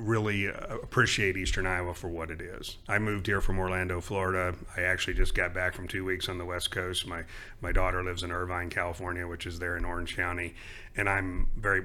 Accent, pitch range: American, 90-105 Hz